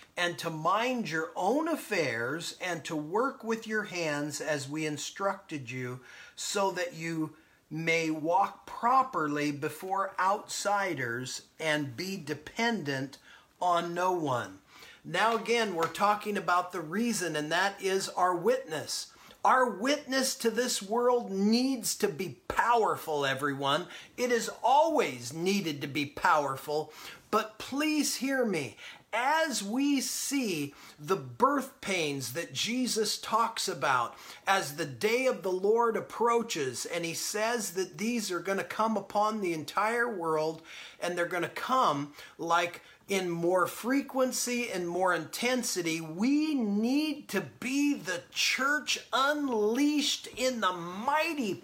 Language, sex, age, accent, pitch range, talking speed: English, male, 40-59, American, 170-255 Hz, 130 wpm